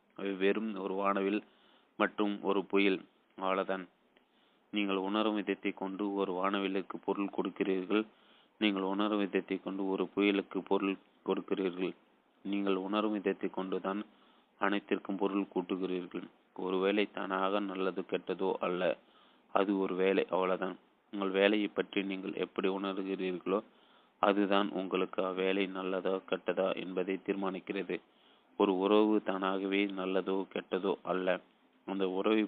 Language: Tamil